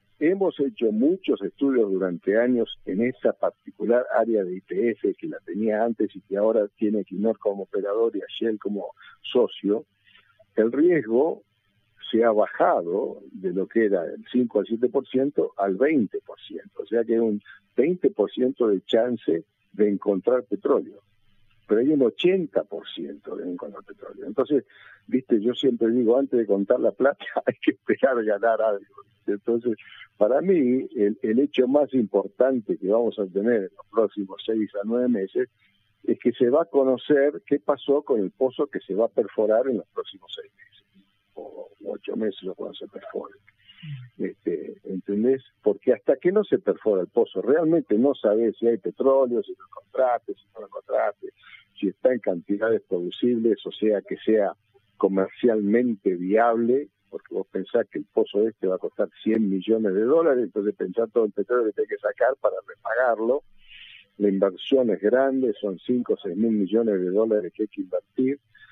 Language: Spanish